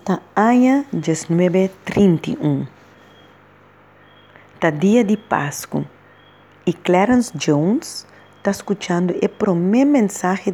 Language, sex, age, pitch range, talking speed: English, female, 40-59, 150-210 Hz, 70 wpm